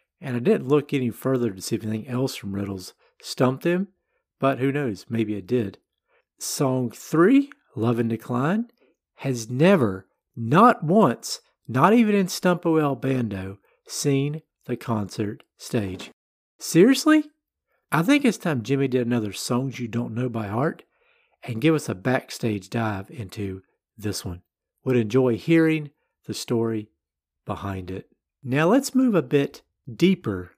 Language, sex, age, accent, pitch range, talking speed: English, male, 50-69, American, 105-155 Hz, 145 wpm